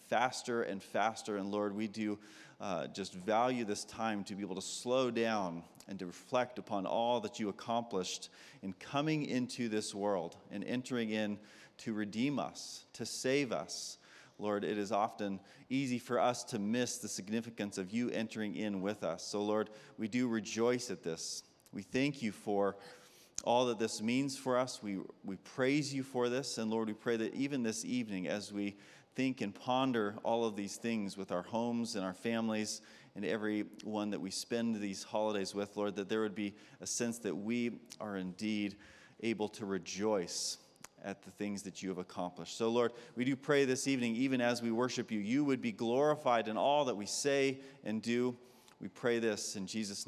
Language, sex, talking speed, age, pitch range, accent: English, male, 190 wpm, 30-49, 100-125 Hz, American